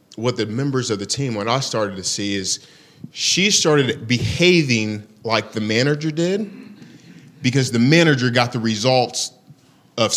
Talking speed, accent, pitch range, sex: 155 wpm, American, 115-150 Hz, male